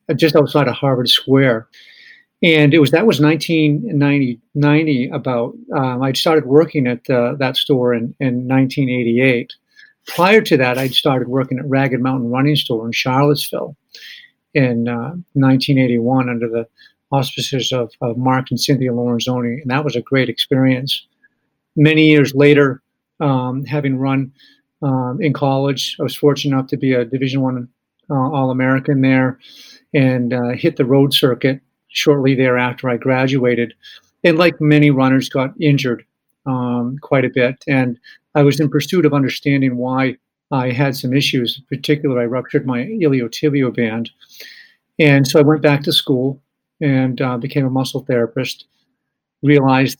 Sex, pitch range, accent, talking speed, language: male, 125-145 Hz, American, 155 wpm, English